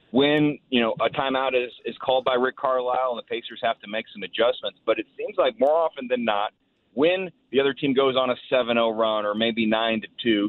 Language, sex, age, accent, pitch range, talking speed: English, male, 40-59, American, 125-160 Hz, 235 wpm